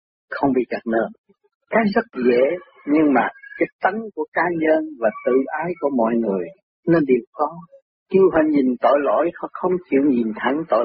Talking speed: 190 wpm